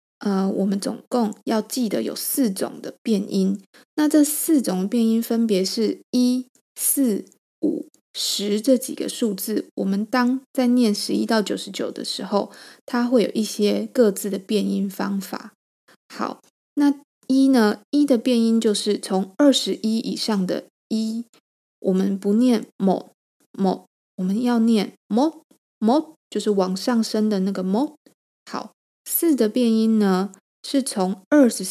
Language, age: Chinese, 20-39